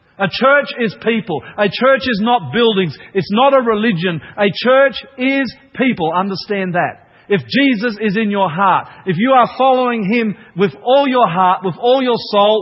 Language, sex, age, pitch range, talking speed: English, male, 40-59, 185-235 Hz, 180 wpm